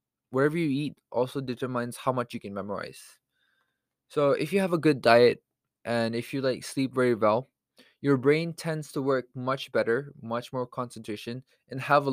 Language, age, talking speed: English, 20-39, 185 wpm